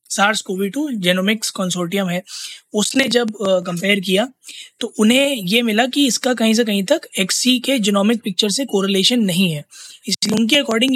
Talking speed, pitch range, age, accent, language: 130 wpm, 190-240 Hz, 20-39, native, Hindi